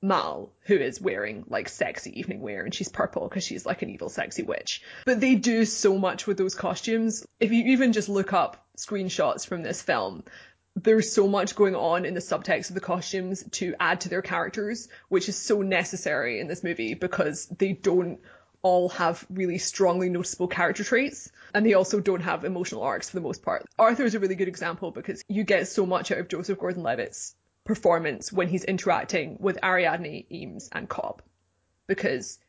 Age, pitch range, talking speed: 20-39, 180-205 Hz, 195 wpm